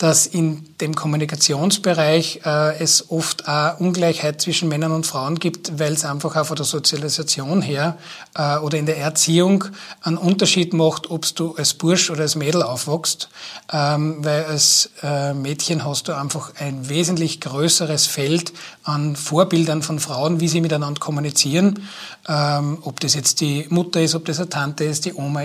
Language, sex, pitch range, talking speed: German, male, 150-175 Hz, 170 wpm